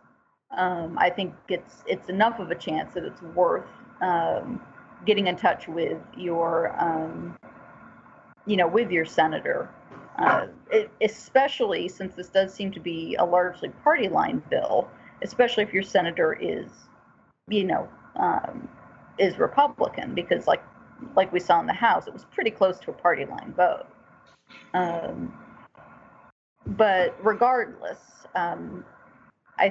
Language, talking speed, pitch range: English, 140 wpm, 180-220 Hz